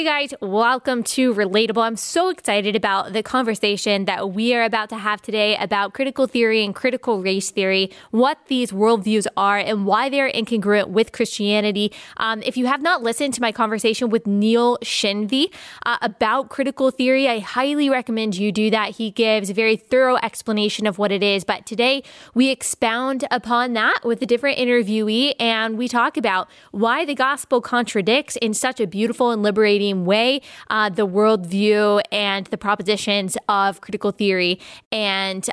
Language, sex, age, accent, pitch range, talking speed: English, female, 20-39, American, 210-255 Hz, 170 wpm